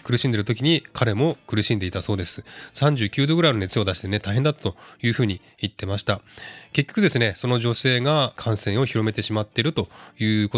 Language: Japanese